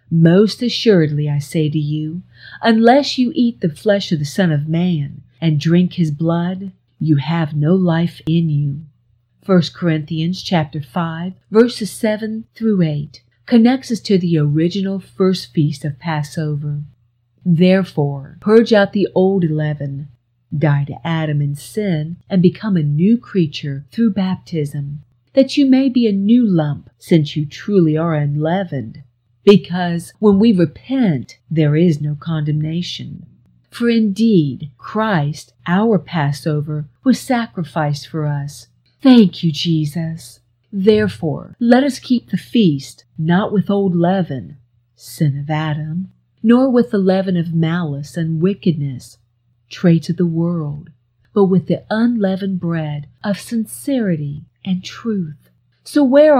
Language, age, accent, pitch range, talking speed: English, 50-69, American, 150-195 Hz, 135 wpm